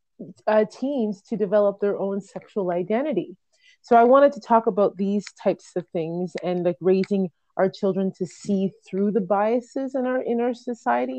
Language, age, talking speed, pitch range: English, 30-49, 175 wpm, 185-220 Hz